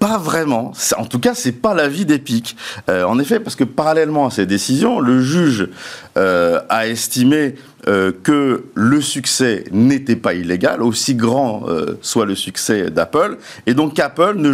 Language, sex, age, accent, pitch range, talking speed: French, male, 50-69, French, 110-155 Hz, 170 wpm